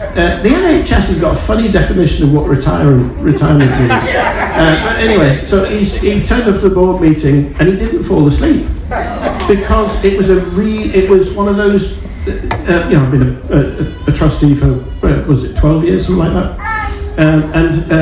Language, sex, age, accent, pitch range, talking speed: English, male, 50-69, British, 125-160 Hz, 200 wpm